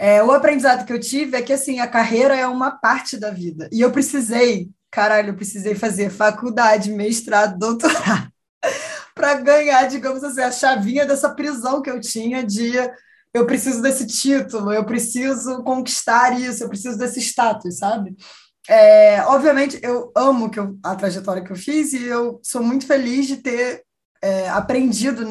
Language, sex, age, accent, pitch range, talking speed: Portuguese, female, 20-39, Brazilian, 215-265 Hz, 155 wpm